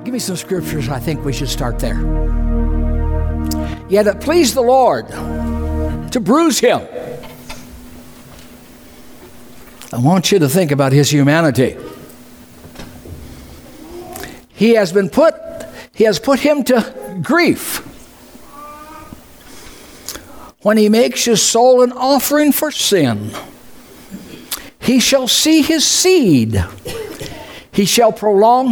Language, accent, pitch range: English, American, 165-255 Hz